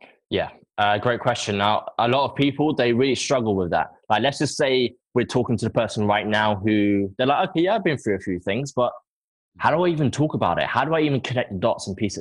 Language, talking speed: English, 260 wpm